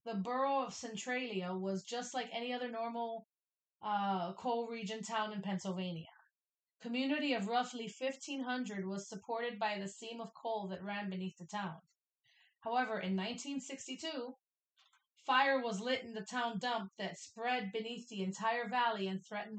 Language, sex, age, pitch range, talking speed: English, female, 30-49, 205-250 Hz, 155 wpm